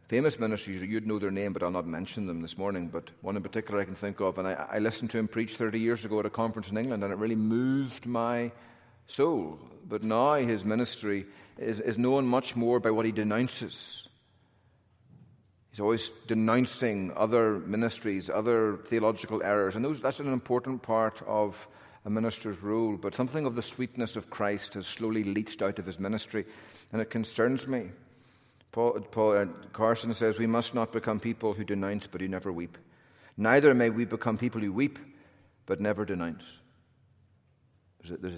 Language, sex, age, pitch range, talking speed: English, male, 40-59, 100-120 Hz, 185 wpm